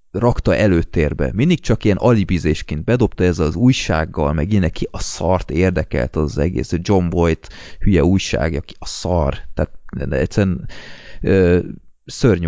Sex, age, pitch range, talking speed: male, 30-49, 80-105 Hz, 135 wpm